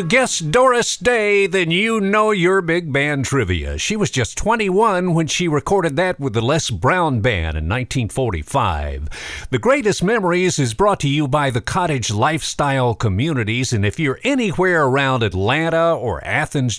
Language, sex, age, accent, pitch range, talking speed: English, male, 50-69, American, 115-175 Hz, 160 wpm